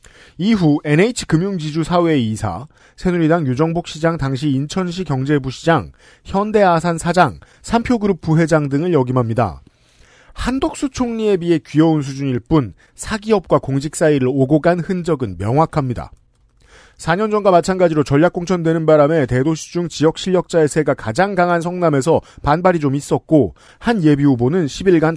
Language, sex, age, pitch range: Korean, male, 40-59, 135-180 Hz